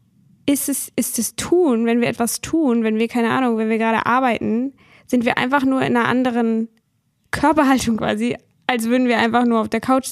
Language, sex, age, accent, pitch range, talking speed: German, female, 10-29, German, 225-260 Hz, 200 wpm